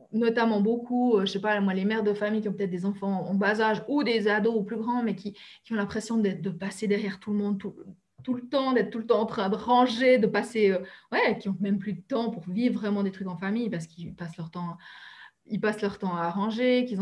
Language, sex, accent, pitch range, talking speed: French, female, French, 195-240 Hz, 275 wpm